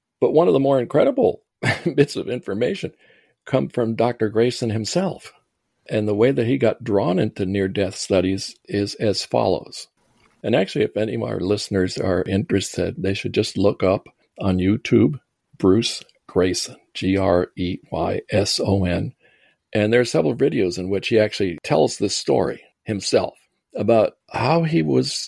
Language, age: English, 50-69